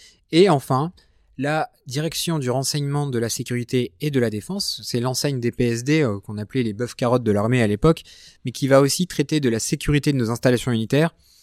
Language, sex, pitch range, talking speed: French, male, 115-145 Hz, 200 wpm